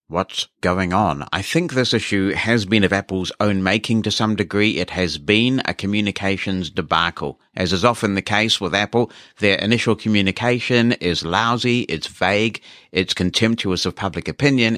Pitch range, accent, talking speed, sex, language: 95-125 Hz, British, 165 wpm, male, English